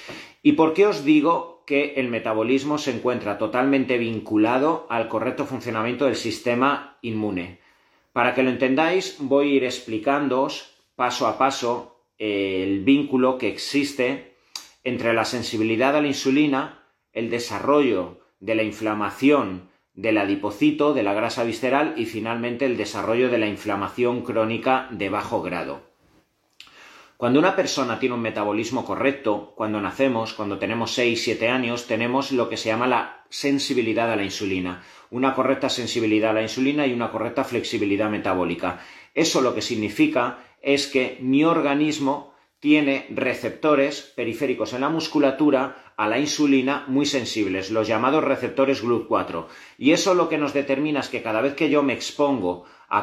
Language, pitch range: Spanish, 110-140 Hz